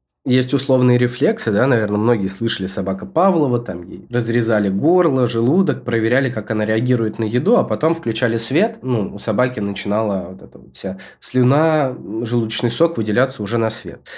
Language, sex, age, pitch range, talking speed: Russian, male, 20-39, 110-135 Hz, 165 wpm